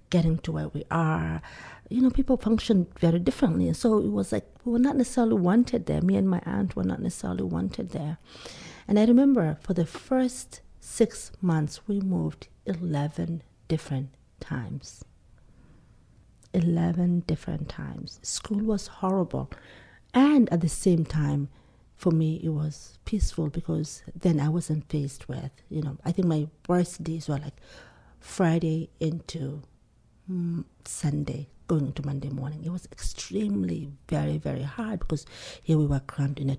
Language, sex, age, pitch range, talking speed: English, female, 50-69, 140-185 Hz, 155 wpm